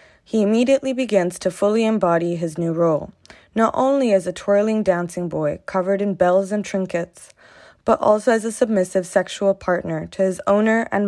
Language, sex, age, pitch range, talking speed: English, female, 20-39, 175-220 Hz, 175 wpm